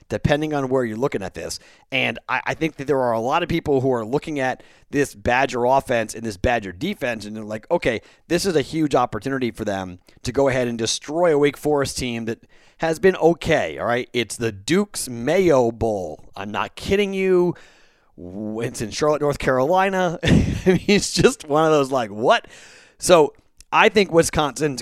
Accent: American